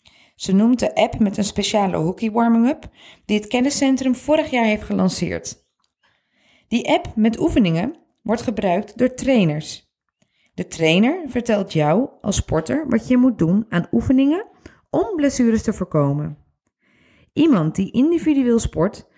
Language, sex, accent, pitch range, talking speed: Dutch, female, Dutch, 190-265 Hz, 140 wpm